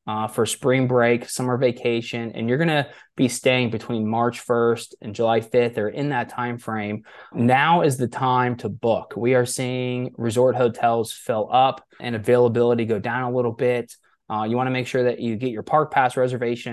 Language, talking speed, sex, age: English, 200 wpm, male, 20-39